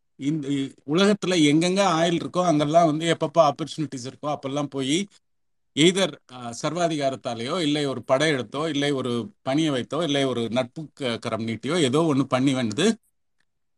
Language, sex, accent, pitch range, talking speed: Tamil, male, native, 140-185 Hz, 125 wpm